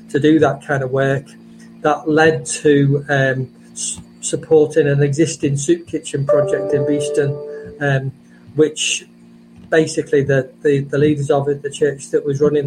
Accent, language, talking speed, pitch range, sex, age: British, English, 160 wpm, 140-165 Hz, male, 40-59